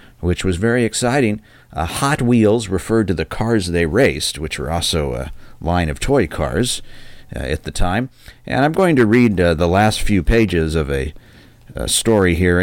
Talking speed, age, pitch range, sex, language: 190 wpm, 50-69, 80-115 Hz, male, English